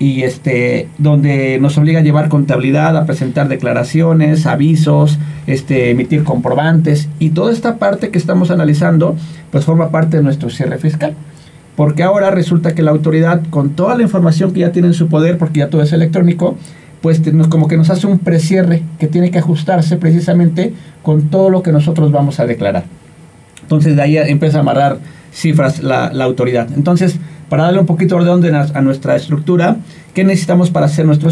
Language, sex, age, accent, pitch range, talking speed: Spanish, male, 40-59, Mexican, 145-165 Hz, 180 wpm